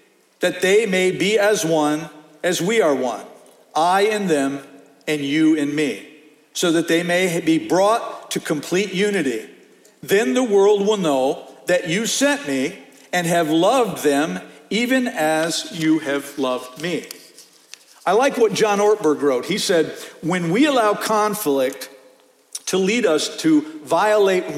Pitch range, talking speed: 155-215 Hz, 150 wpm